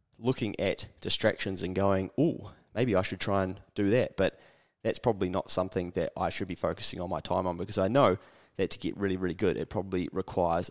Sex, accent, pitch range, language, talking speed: male, Australian, 90-105 Hz, English, 220 wpm